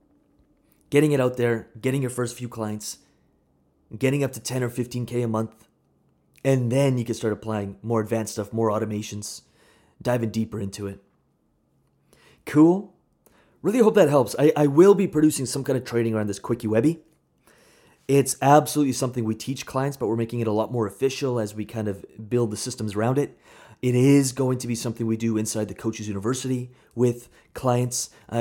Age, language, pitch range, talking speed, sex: 30-49, English, 110-130 Hz, 185 wpm, male